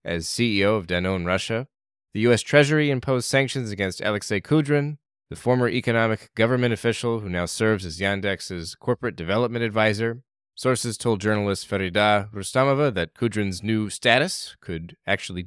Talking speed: 145 wpm